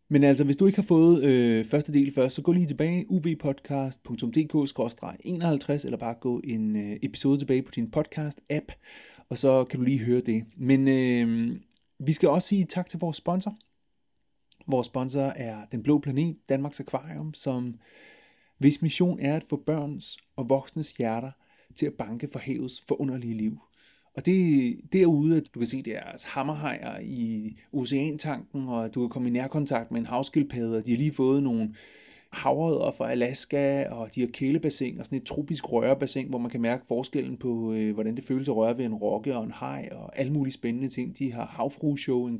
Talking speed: 190 wpm